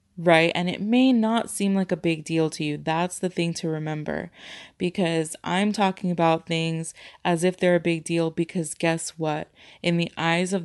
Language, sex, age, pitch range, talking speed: English, female, 20-39, 155-180 Hz, 195 wpm